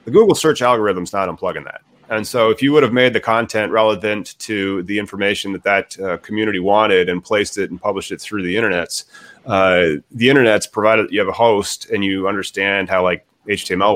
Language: English